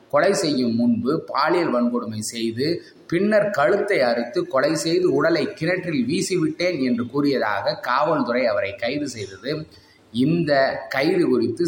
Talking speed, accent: 115 wpm, native